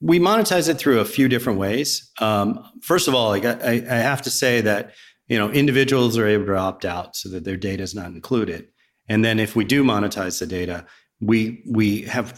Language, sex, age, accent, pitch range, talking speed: English, male, 40-59, American, 95-120 Hz, 225 wpm